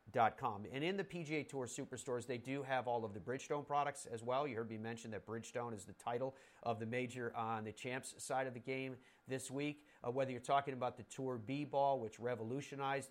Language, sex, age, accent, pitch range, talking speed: English, male, 40-59, American, 110-135 Hz, 215 wpm